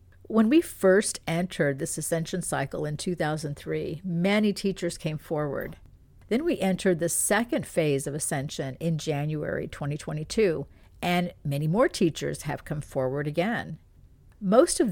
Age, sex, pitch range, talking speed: 50-69, female, 150-195 Hz, 135 wpm